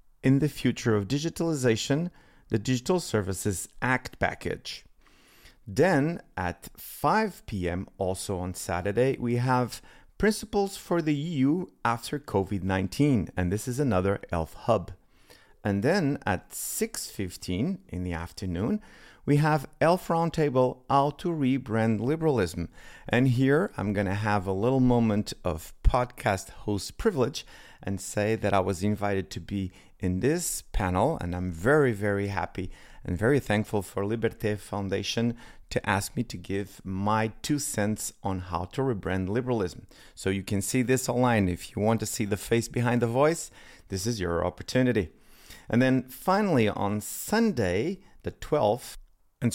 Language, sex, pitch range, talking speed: English, male, 95-135 Hz, 150 wpm